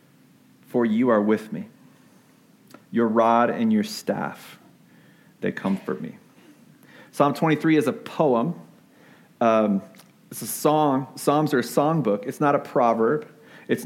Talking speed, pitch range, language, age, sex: 130 wpm, 115-155 Hz, English, 40-59, male